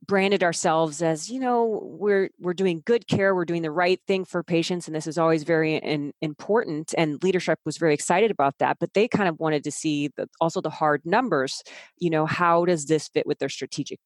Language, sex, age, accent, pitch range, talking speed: English, female, 30-49, American, 150-180 Hz, 220 wpm